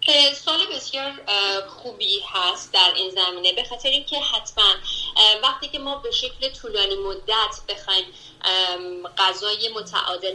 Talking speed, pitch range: 120 wpm, 190-290 Hz